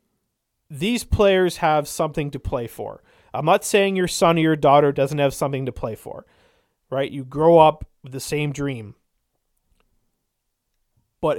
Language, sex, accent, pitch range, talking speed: English, male, American, 140-180 Hz, 160 wpm